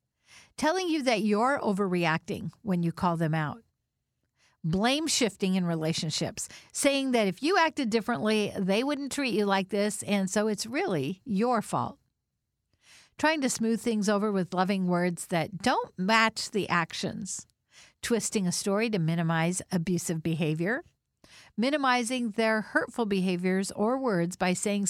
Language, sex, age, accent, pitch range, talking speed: English, female, 50-69, American, 180-240 Hz, 145 wpm